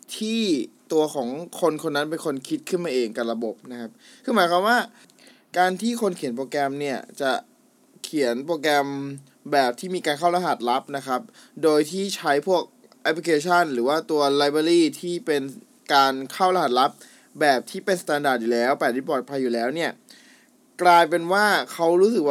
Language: Thai